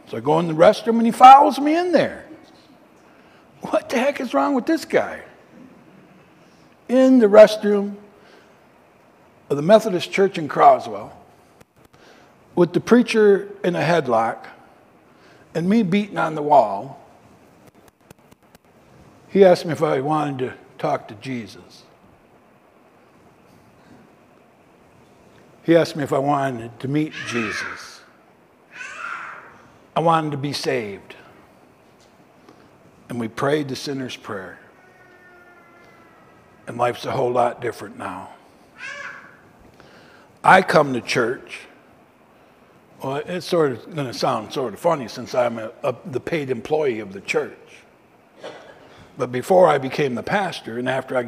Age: 60-79